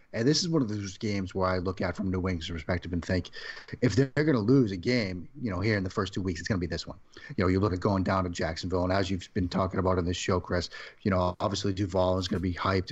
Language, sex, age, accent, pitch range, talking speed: English, male, 30-49, American, 95-120 Hz, 305 wpm